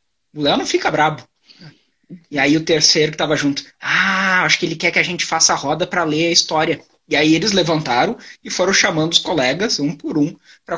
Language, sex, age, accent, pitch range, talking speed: Portuguese, male, 20-39, Brazilian, 155-205 Hz, 225 wpm